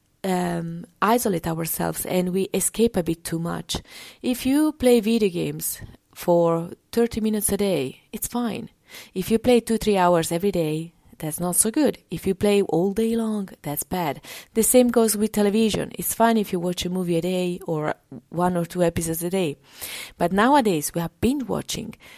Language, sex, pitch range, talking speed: English, female, 170-225 Hz, 185 wpm